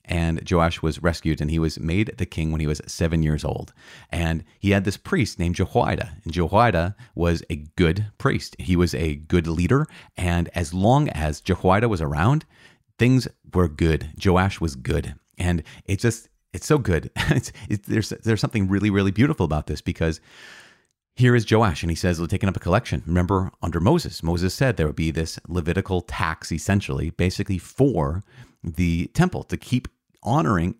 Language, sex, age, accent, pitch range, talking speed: English, male, 30-49, American, 80-105 Hz, 185 wpm